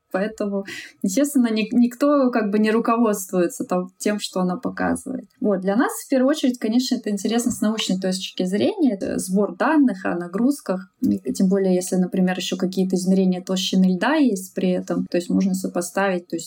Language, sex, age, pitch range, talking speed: Russian, female, 20-39, 185-235 Hz, 155 wpm